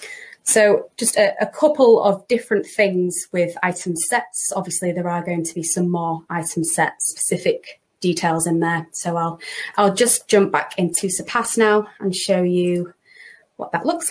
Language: English